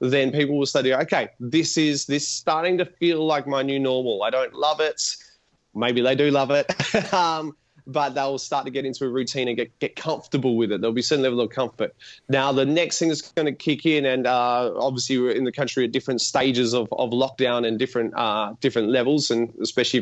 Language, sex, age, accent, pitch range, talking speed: English, male, 20-39, Australian, 125-145 Hz, 225 wpm